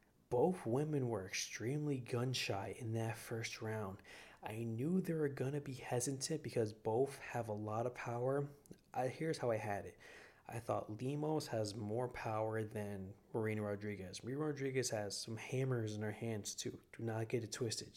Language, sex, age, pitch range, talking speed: English, male, 20-39, 105-125 Hz, 175 wpm